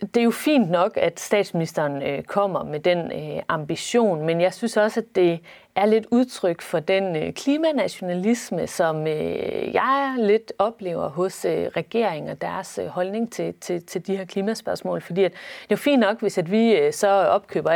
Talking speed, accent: 180 wpm, native